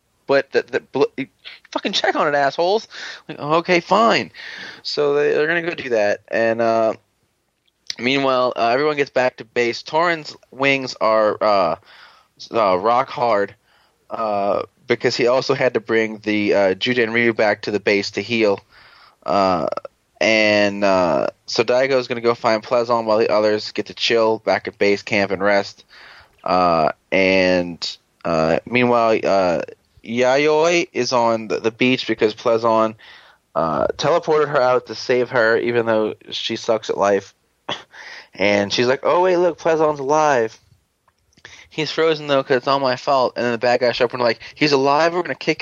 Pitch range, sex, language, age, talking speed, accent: 110-150 Hz, male, English, 20-39, 175 wpm, American